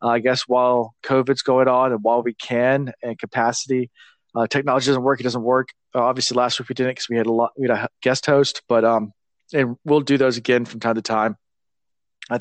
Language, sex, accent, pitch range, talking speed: English, male, American, 115-140 Hz, 220 wpm